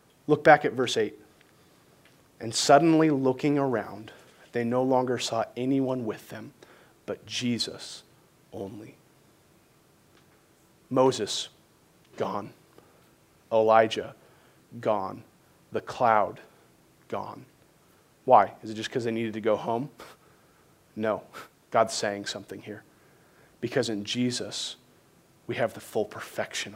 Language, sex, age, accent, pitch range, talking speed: English, male, 30-49, American, 125-170 Hz, 110 wpm